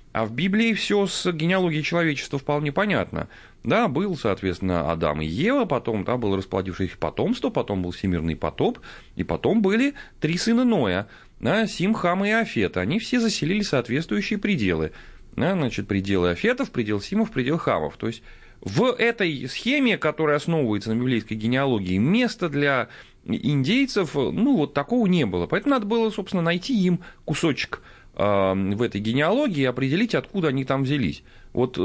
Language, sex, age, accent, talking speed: Russian, male, 30-49, native, 155 wpm